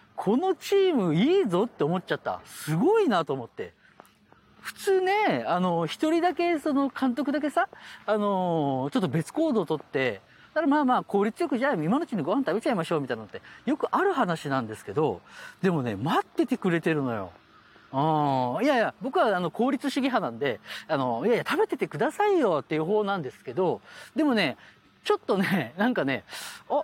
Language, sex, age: Japanese, male, 40-59